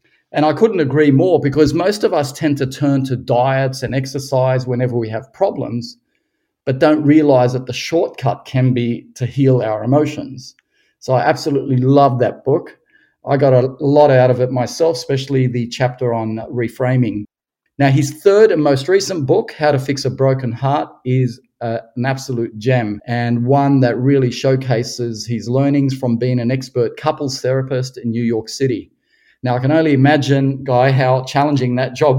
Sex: male